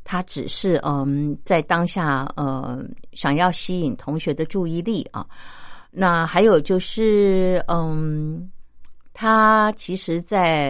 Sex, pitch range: female, 145-195 Hz